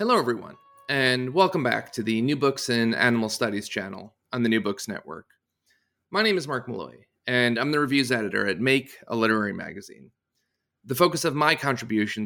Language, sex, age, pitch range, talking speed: English, male, 30-49, 110-140 Hz, 185 wpm